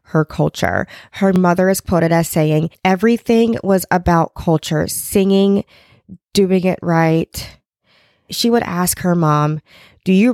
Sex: female